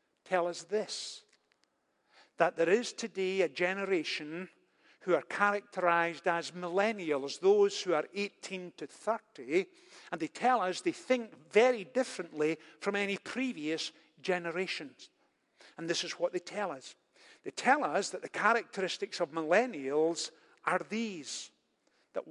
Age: 50-69